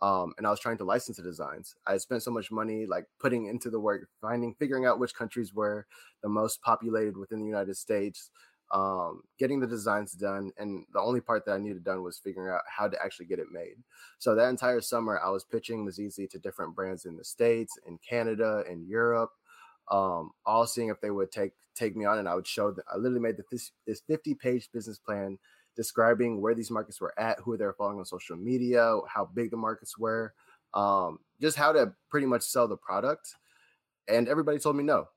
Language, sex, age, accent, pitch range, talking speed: English, male, 20-39, American, 100-120 Hz, 220 wpm